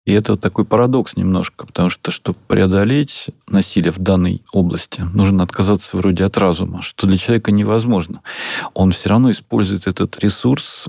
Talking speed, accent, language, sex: 155 wpm, native, Russian, male